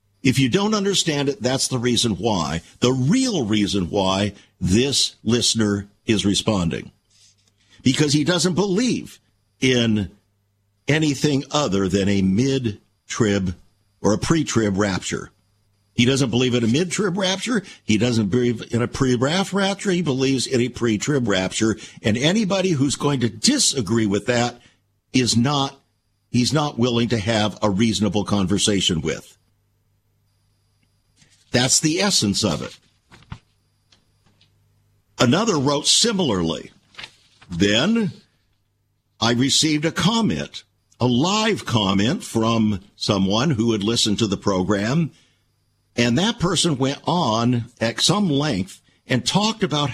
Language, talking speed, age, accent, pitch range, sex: English, 125 wpm, 50-69, American, 105-145 Hz, male